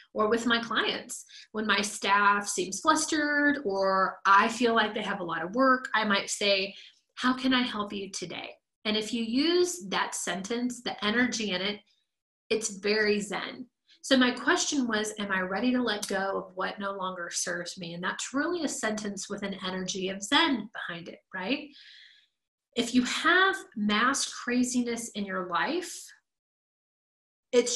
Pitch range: 195-250 Hz